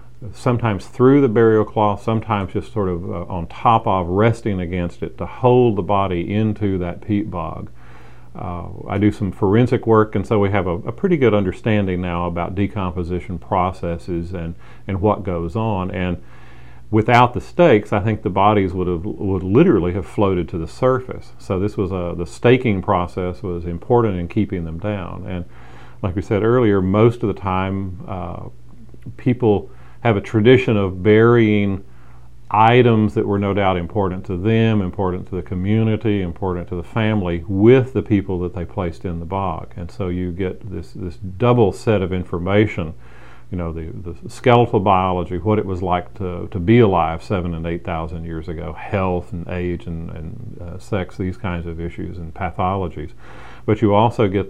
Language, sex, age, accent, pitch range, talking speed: English, male, 40-59, American, 90-110 Hz, 185 wpm